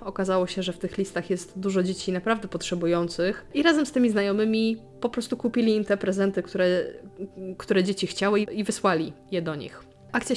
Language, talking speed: Polish, 185 wpm